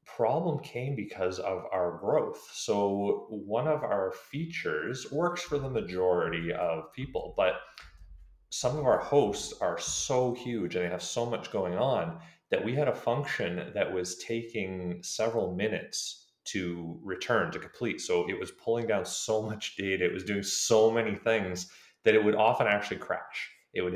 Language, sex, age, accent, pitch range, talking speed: English, male, 30-49, American, 90-120 Hz, 170 wpm